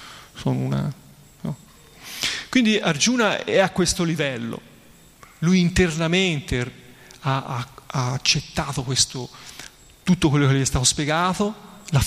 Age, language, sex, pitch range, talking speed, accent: 30-49, Italian, male, 135-170 Hz, 120 wpm, native